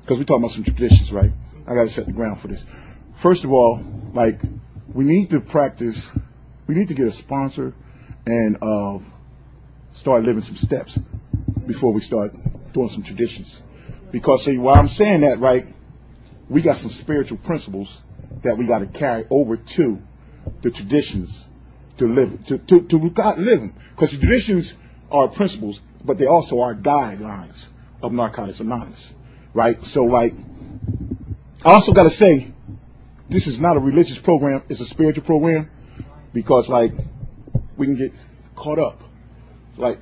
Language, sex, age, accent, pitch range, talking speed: English, male, 40-59, American, 110-140 Hz, 160 wpm